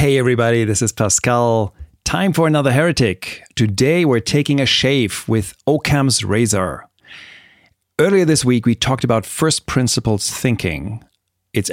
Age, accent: 30-49, German